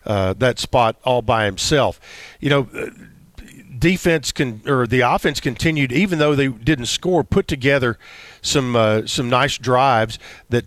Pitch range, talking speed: 125-155 Hz, 155 wpm